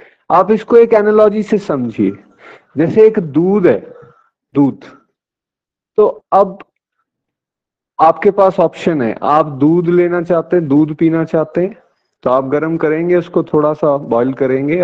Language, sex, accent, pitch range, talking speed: Hindi, male, native, 150-195 Hz, 140 wpm